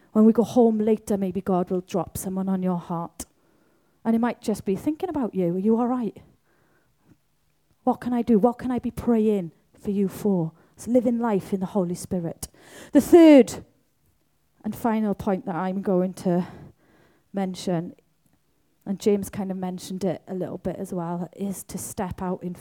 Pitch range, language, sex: 185-240 Hz, English, female